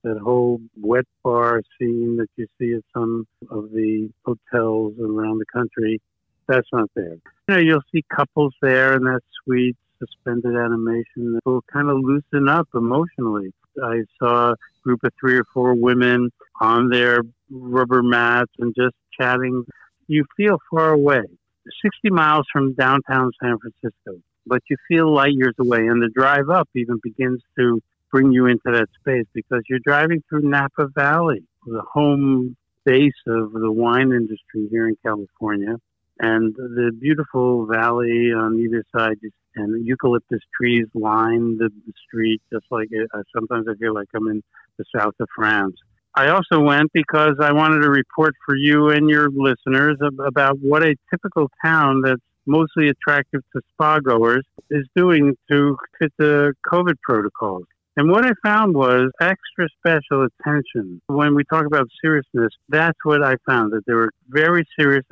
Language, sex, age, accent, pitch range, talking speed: English, male, 60-79, American, 115-145 Hz, 160 wpm